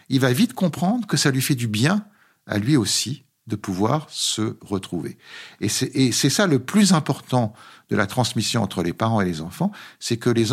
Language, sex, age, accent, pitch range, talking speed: French, male, 50-69, French, 95-120 Hz, 210 wpm